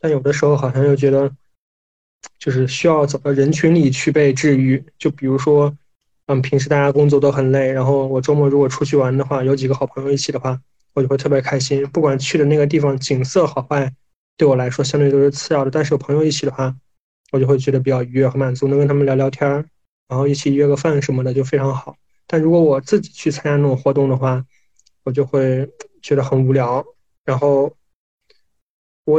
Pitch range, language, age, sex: 135-150 Hz, Chinese, 20-39, male